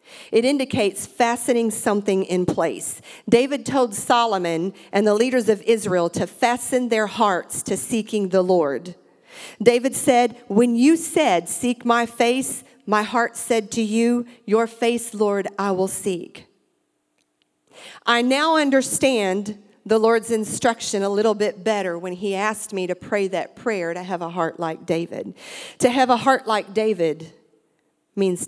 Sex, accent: female, American